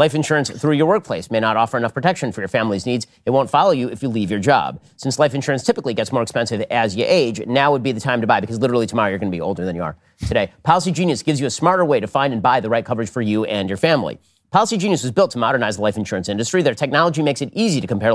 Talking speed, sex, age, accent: 290 wpm, male, 40-59, American